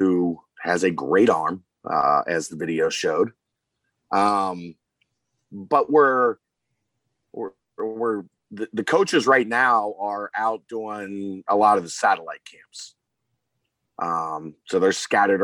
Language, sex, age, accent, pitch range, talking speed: English, male, 40-59, American, 90-120 Hz, 130 wpm